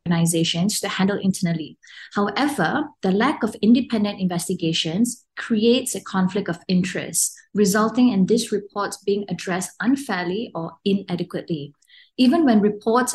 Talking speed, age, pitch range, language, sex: 125 wpm, 20-39, 185-235 Hz, English, female